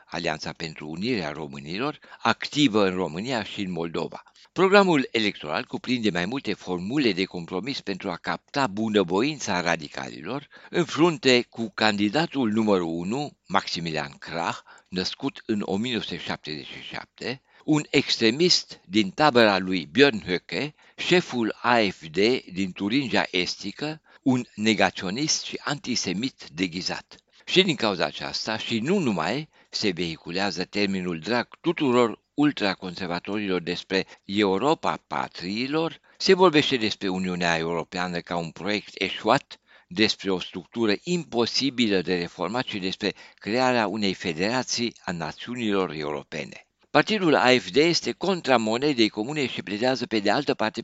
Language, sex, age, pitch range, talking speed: Romanian, male, 60-79, 90-130 Hz, 120 wpm